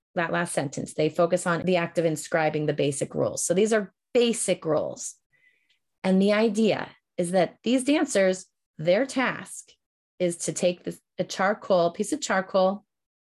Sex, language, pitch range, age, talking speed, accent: female, English, 165-210 Hz, 30-49, 160 wpm, American